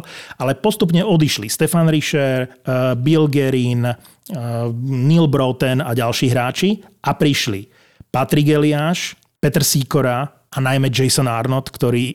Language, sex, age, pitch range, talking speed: Slovak, male, 30-49, 125-150 Hz, 115 wpm